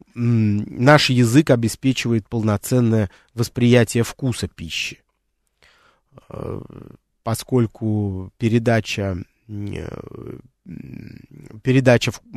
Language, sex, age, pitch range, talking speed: Russian, male, 20-39, 100-125 Hz, 50 wpm